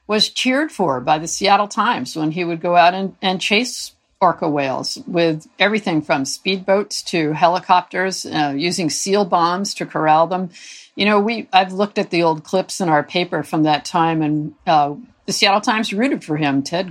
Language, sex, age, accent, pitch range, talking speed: English, female, 50-69, American, 160-205 Hz, 190 wpm